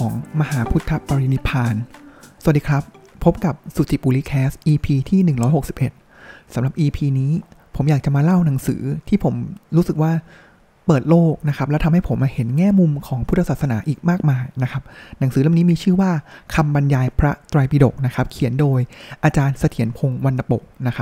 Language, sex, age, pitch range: Thai, male, 20-39, 130-170 Hz